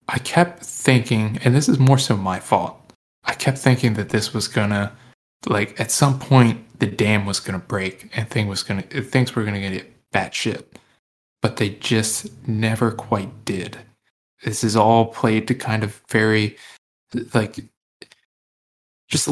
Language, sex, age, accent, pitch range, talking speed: English, male, 20-39, American, 100-125 Hz, 160 wpm